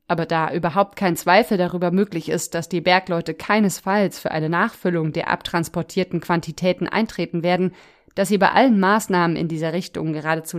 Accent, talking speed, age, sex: German, 165 wpm, 30-49, female